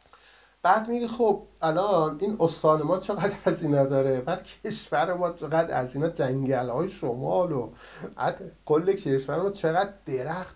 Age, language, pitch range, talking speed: 50-69, Persian, 140-195 Hz, 135 wpm